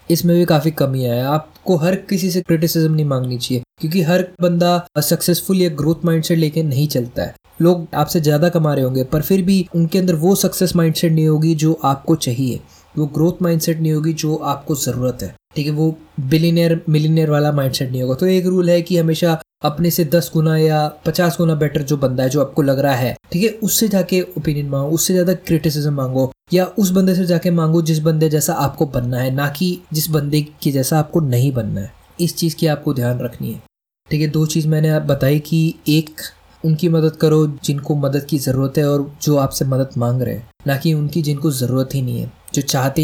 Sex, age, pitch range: male, 20-39, 140-170 Hz